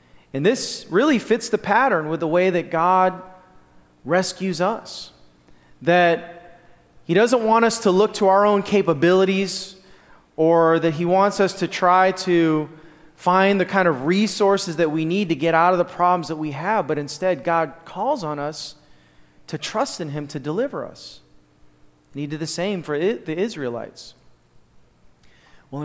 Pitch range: 160-200 Hz